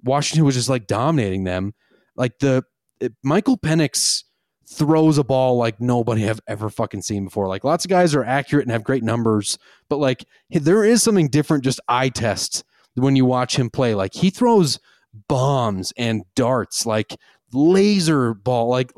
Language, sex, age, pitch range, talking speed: English, male, 30-49, 115-155 Hz, 175 wpm